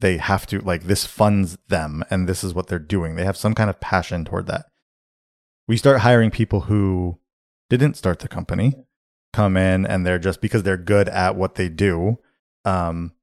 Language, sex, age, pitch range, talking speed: English, male, 20-39, 85-100 Hz, 195 wpm